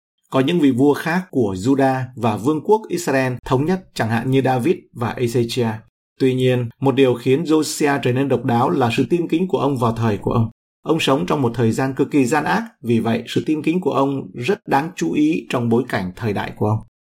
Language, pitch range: Vietnamese, 115-145 Hz